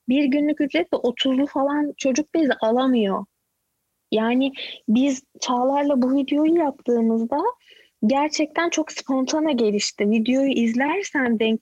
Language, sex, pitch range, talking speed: Turkish, female, 230-295 Hz, 110 wpm